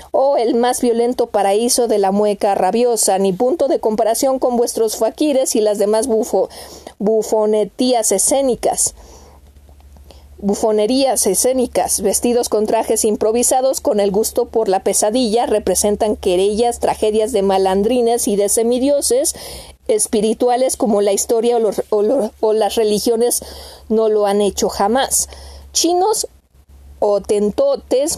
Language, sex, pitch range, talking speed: Spanish, female, 205-245 Hz, 130 wpm